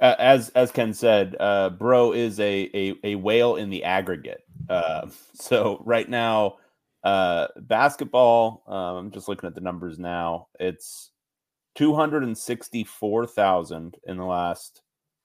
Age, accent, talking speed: 30-49, American, 150 wpm